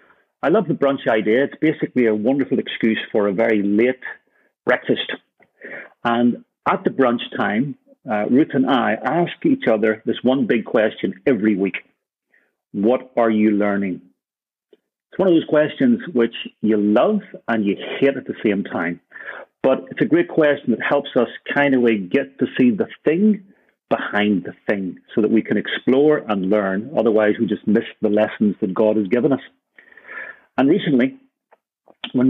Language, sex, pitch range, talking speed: English, male, 110-155 Hz, 170 wpm